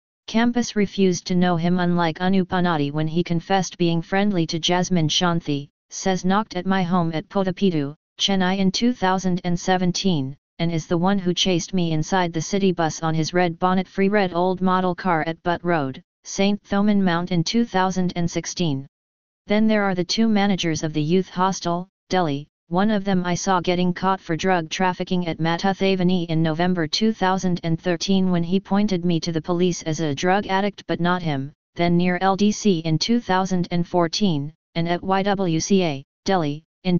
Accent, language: American, English